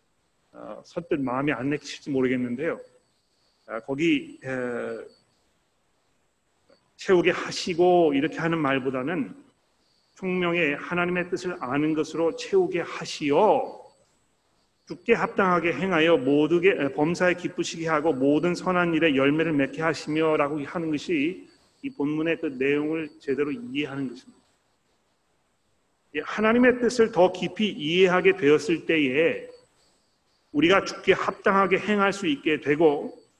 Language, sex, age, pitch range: Korean, male, 40-59, 150-195 Hz